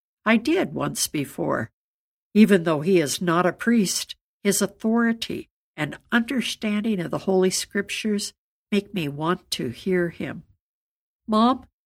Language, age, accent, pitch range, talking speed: English, 60-79, American, 175-225 Hz, 130 wpm